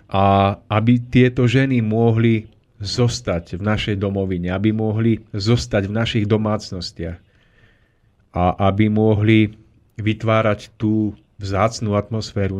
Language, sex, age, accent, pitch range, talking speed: Czech, male, 30-49, native, 100-115 Hz, 105 wpm